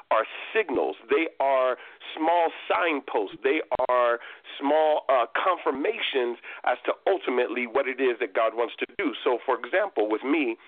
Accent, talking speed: American, 150 wpm